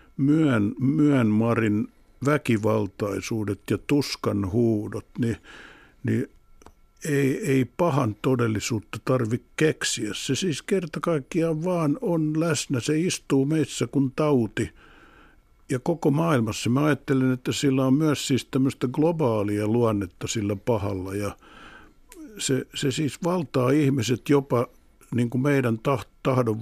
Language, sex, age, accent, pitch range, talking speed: Finnish, male, 60-79, native, 105-140 Hz, 105 wpm